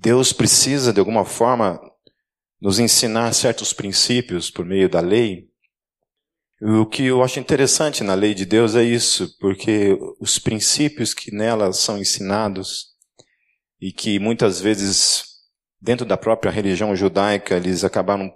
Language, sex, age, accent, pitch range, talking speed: Portuguese, male, 40-59, Brazilian, 95-120 Hz, 135 wpm